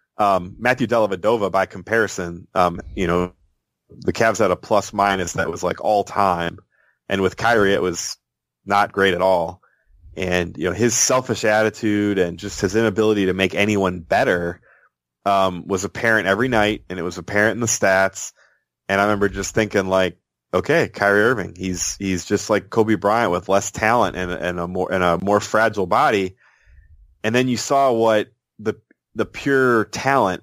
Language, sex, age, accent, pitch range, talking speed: English, male, 30-49, American, 90-110 Hz, 180 wpm